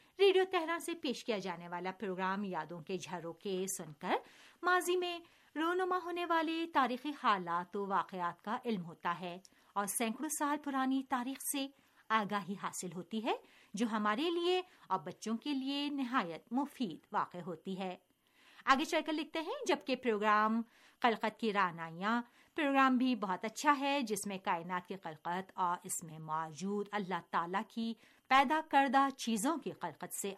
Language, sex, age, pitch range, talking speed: Urdu, female, 50-69, 190-300 Hz, 155 wpm